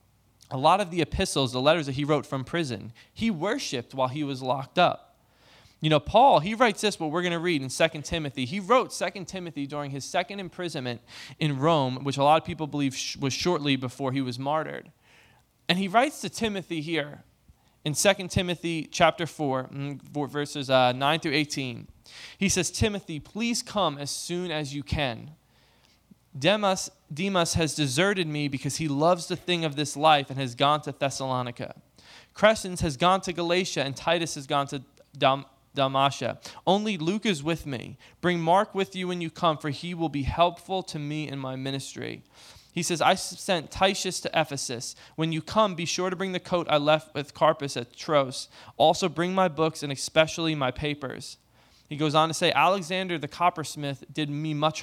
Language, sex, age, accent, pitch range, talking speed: English, male, 20-39, American, 140-175 Hz, 190 wpm